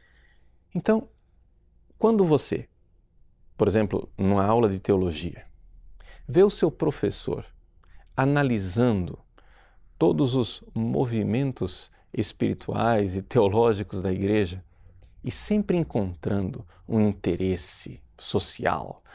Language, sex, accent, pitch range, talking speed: Portuguese, male, Brazilian, 90-130 Hz, 90 wpm